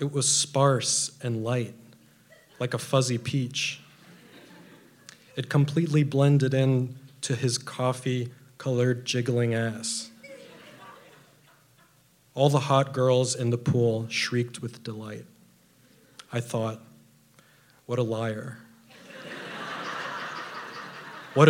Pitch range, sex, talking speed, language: 120-145 Hz, male, 95 wpm, English